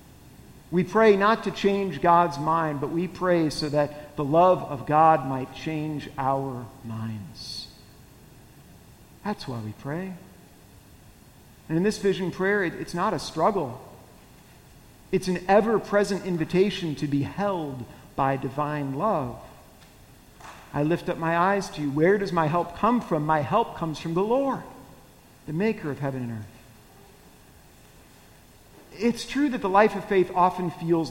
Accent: American